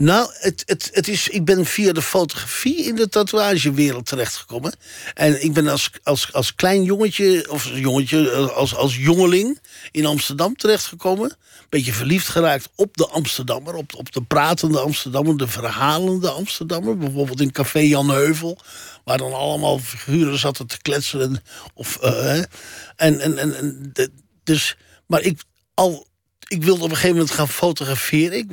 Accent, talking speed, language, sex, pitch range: Dutch, 135 wpm, Dutch, male, 140-180 Hz